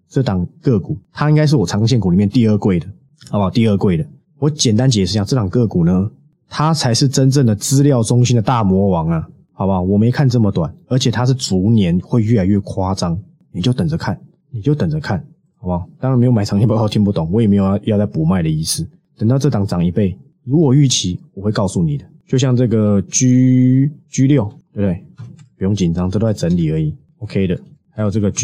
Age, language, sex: 20-39, Chinese, male